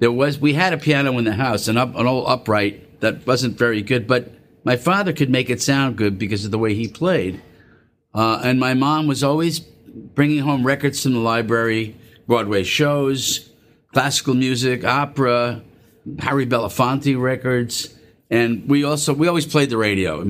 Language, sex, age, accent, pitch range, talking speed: English, male, 50-69, American, 115-140 Hz, 175 wpm